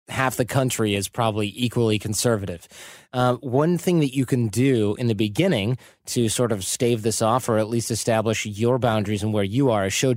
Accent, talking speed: American, 205 wpm